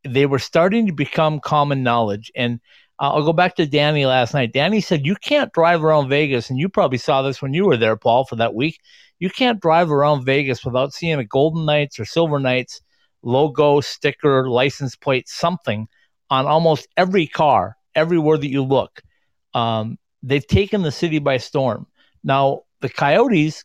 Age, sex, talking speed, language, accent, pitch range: 50-69, male, 185 wpm, English, American, 130-170 Hz